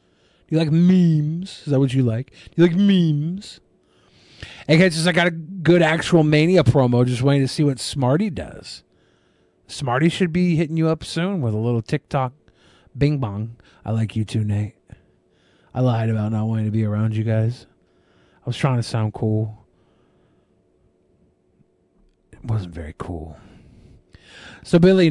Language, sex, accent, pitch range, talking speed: English, male, American, 115-155 Hz, 160 wpm